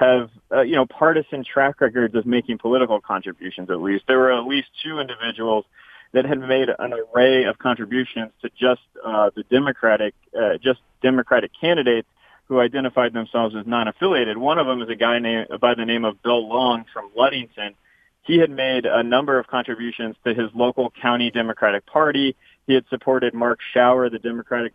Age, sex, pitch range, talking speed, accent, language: 30-49, male, 120-140 Hz, 185 wpm, American, English